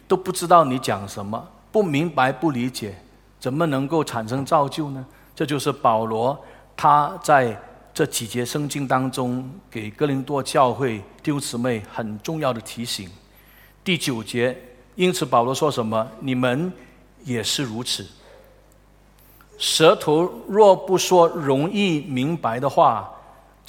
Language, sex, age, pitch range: Chinese, male, 50-69, 125-165 Hz